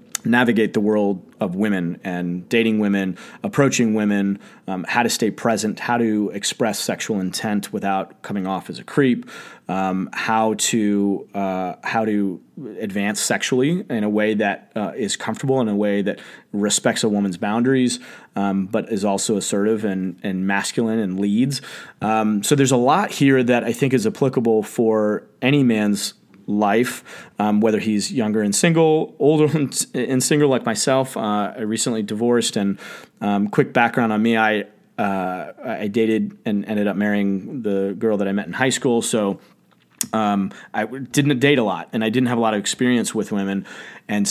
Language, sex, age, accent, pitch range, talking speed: English, male, 30-49, American, 100-125 Hz, 170 wpm